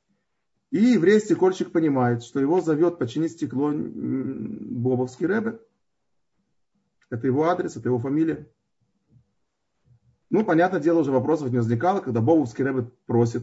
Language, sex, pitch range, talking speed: Russian, male, 120-170 Hz, 125 wpm